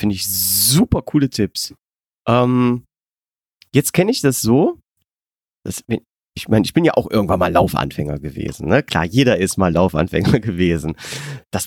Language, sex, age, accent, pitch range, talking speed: German, male, 30-49, German, 100-140 Hz, 150 wpm